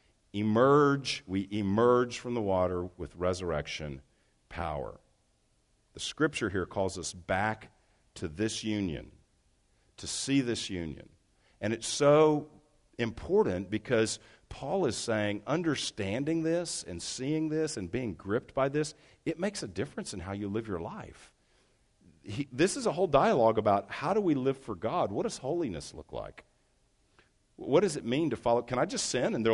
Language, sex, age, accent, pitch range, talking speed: English, male, 50-69, American, 90-135 Hz, 160 wpm